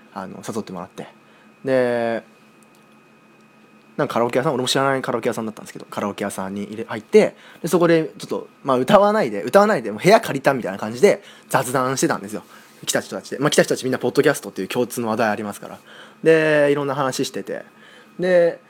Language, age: Japanese, 20-39